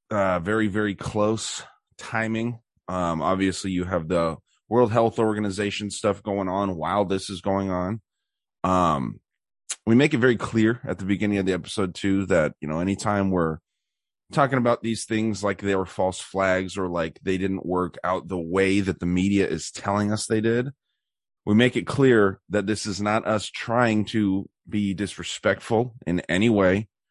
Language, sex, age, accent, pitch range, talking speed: English, male, 30-49, American, 95-110 Hz, 175 wpm